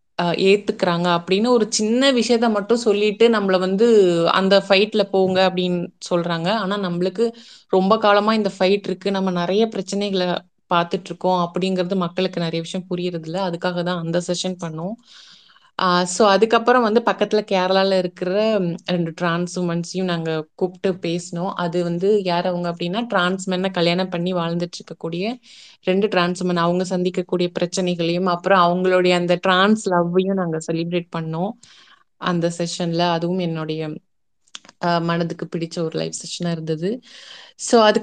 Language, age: Tamil, 20-39